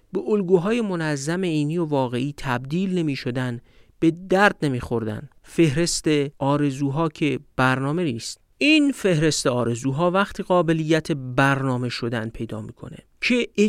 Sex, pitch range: male, 130-185 Hz